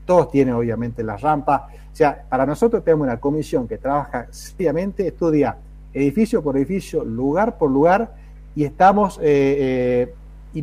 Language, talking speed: Spanish, 150 wpm